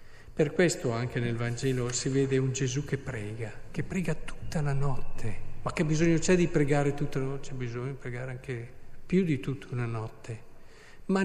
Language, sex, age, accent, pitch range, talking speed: Italian, male, 50-69, native, 135-185 Hz, 190 wpm